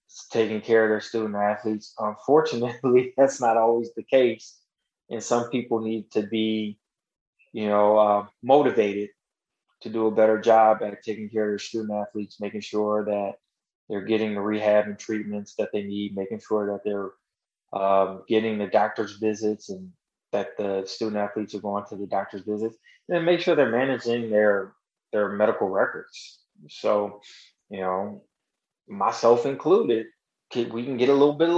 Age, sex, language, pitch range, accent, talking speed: 20-39, male, English, 105-115 Hz, American, 165 wpm